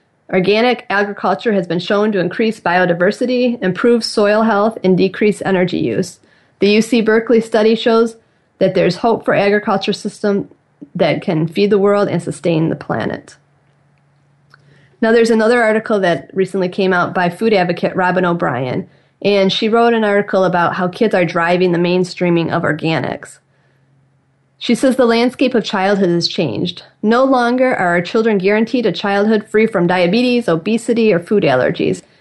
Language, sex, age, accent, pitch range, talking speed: English, female, 30-49, American, 180-220 Hz, 160 wpm